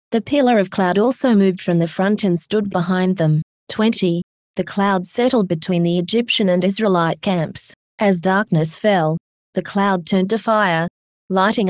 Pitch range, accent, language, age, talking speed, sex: 175-205 Hz, Australian, English, 20-39, 165 wpm, female